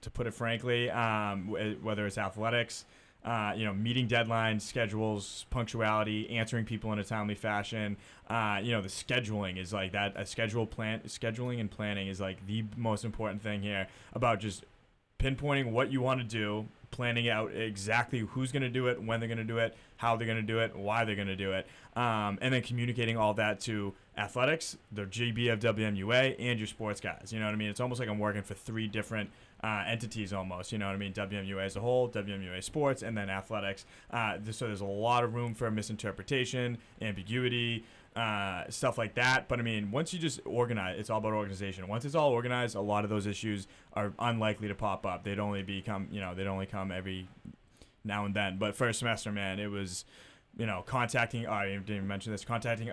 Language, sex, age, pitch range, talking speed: English, male, 20-39, 100-120 Hz, 210 wpm